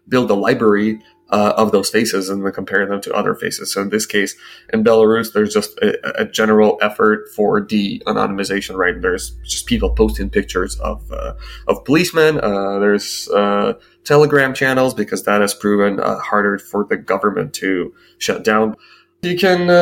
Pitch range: 100-120 Hz